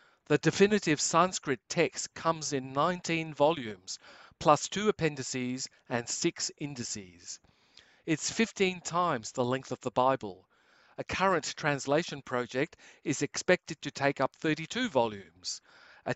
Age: 50-69